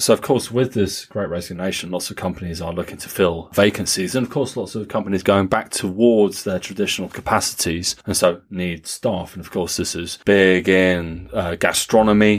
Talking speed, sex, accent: 195 wpm, male, British